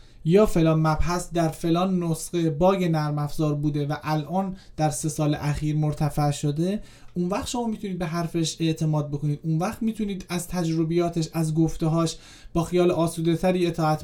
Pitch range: 150-185 Hz